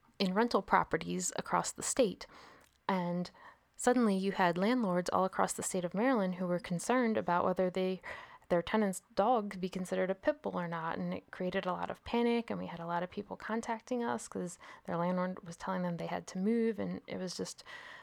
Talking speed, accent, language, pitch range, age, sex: 210 wpm, American, English, 180-210 Hz, 20-39, female